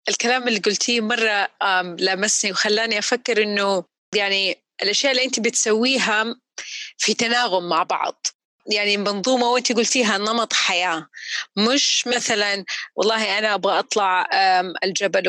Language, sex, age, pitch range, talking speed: Arabic, female, 30-49, 190-240 Hz, 120 wpm